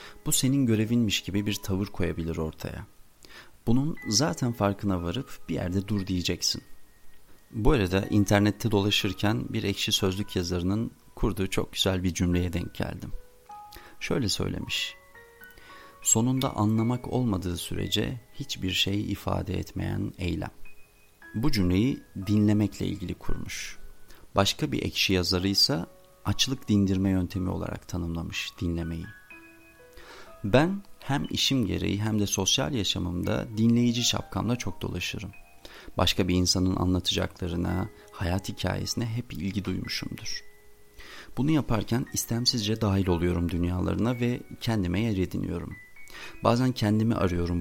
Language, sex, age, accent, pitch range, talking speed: Turkish, male, 40-59, native, 90-115 Hz, 115 wpm